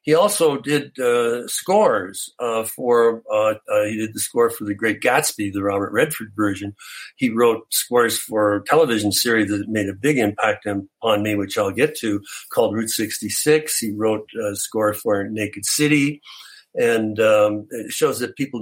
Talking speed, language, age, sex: 175 wpm, English, 60-79, male